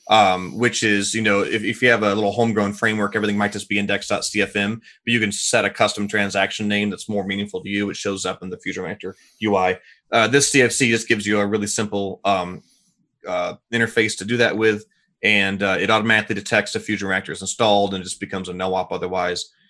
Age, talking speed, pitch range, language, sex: 30-49, 220 wpm, 100-110 Hz, English, male